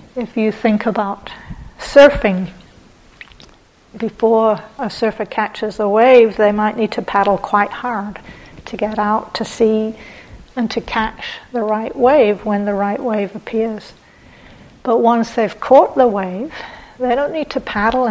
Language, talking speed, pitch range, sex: English, 150 wpm, 210-235 Hz, female